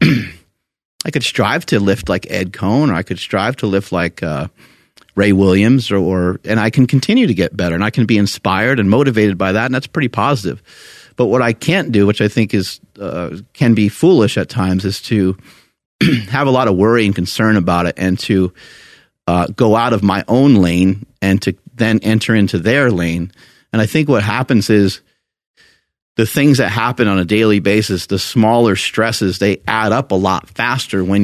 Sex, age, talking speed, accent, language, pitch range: male, 30-49, 205 wpm, American, English, 95-120 Hz